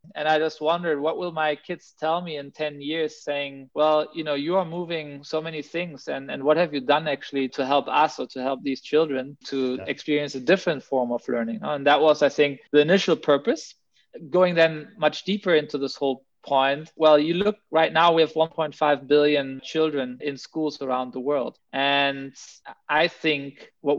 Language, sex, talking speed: English, male, 200 wpm